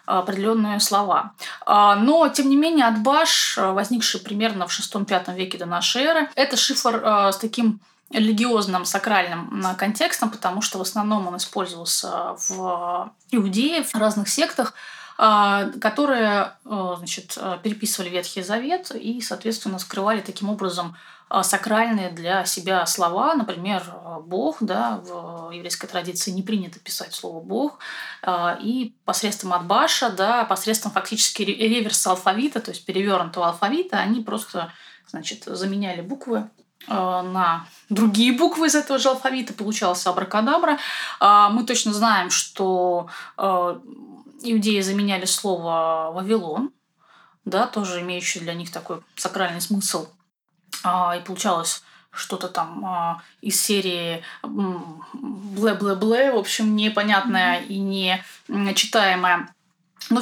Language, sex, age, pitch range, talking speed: Russian, female, 20-39, 185-230 Hz, 110 wpm